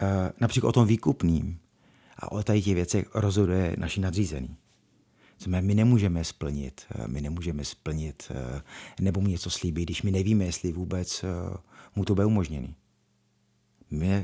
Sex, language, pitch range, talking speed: male, Czech, 90-110 Hz, 140 wpm